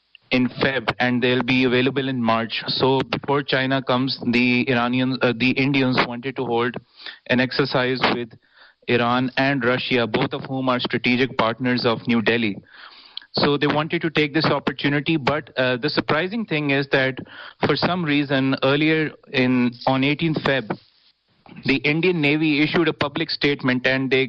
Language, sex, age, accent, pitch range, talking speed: English, male, 30-49, Indian, 125-140 Hz, 165 wpm